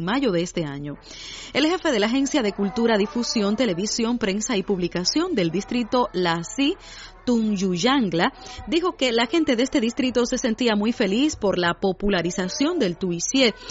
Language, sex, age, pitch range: Chinese, female, 30-49, 195-260 Hz